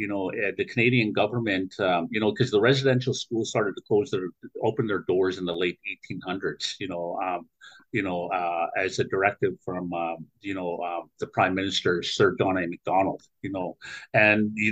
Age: 50-69